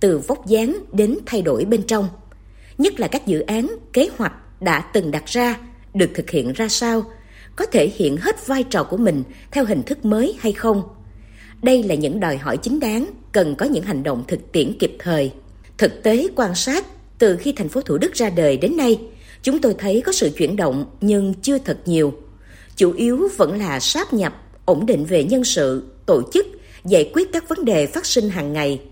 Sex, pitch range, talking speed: female, 165-255 Hz, 210 wpm